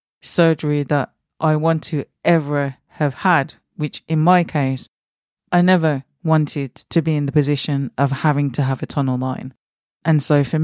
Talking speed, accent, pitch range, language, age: 170 wpm, British, 135-160 Hz, English, 30-49